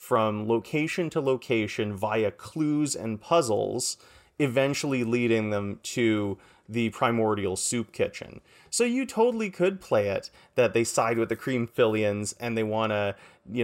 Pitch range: 105-130 Hz